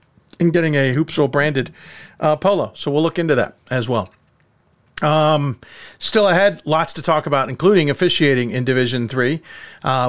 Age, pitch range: 50-69, 130-165 Hz